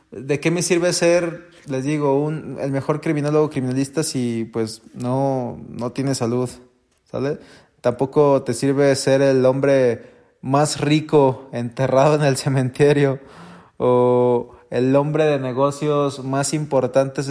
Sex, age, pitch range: male, 20-39, 125-150 Hz